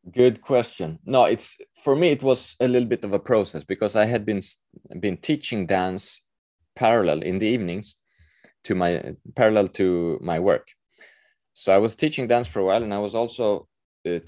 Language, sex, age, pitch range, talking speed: Swedish, male, 20-39, 85-115 Hz, 185 wpm